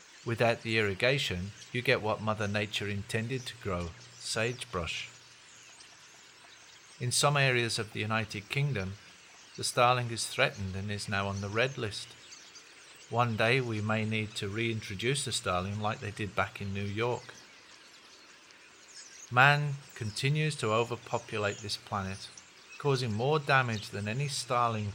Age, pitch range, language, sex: 40-59, 100-125 Hz, English, male